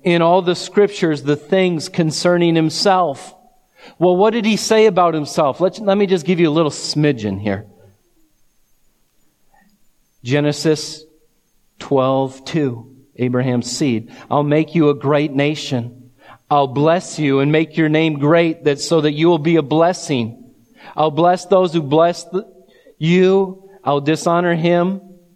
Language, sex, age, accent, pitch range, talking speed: English, male, 40-59, American, 145-175 Hz, 135 wpm